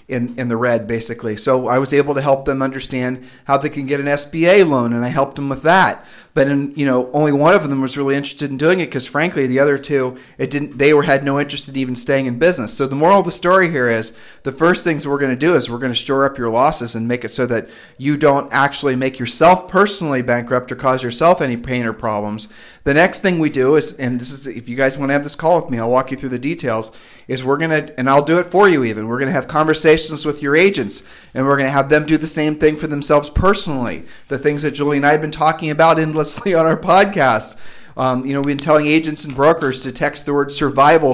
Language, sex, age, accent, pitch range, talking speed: English, male, 40-59, American, 130-155 Hz, 270 wpm